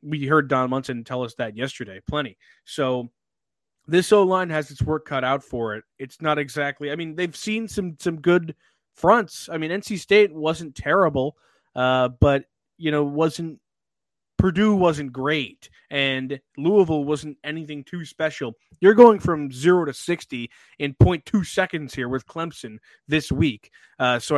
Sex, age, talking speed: male, 20-39, 160 wpm